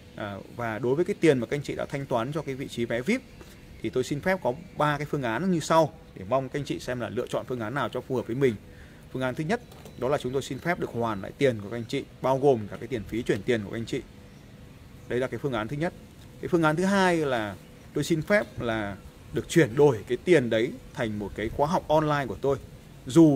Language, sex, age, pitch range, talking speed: Vietnamese, male, 20-39, 115-155 Hz, 280 wpm